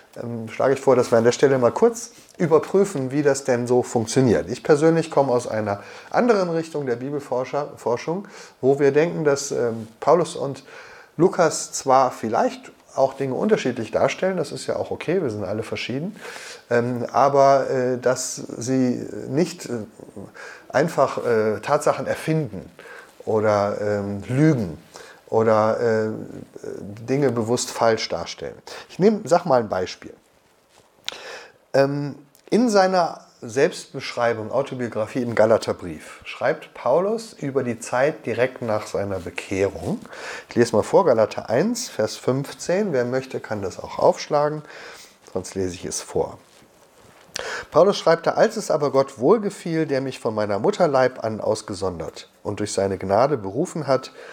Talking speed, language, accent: 135 wpm, German, German